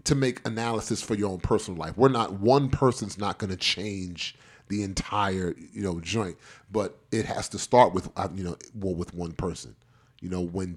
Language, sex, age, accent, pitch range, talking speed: English, male, 30-49, American, 95-130 Hz, 195 wpm